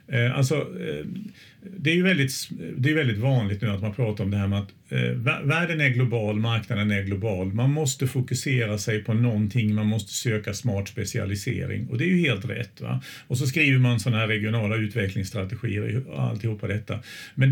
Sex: male